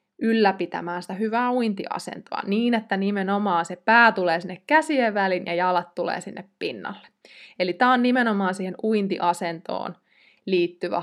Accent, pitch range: native, 180-230 Hz